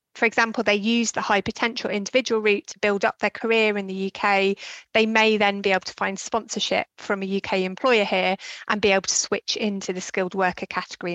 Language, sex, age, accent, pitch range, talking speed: English, female, 30-49, British, 190-220 Hz, 215 wpm